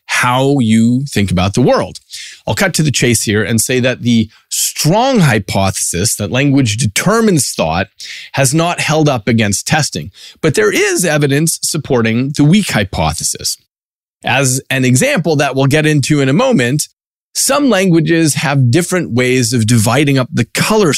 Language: English